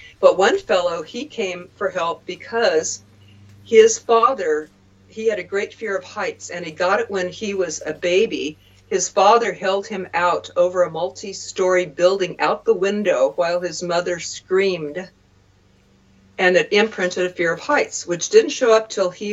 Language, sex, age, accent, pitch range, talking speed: English, female, 50-69, American, 170-200 Hz, 170 wpm